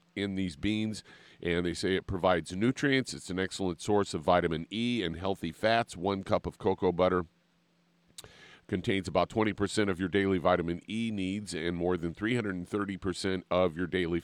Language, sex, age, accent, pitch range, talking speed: English, male, 50-69, American, 90-105 Hz, 175 wpm